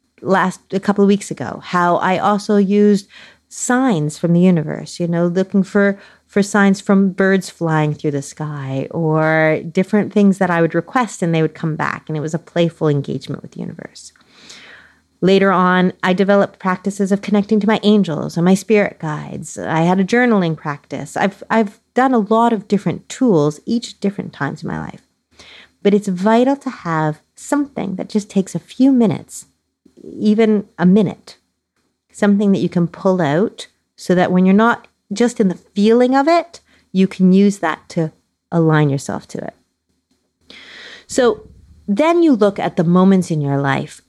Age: 30-49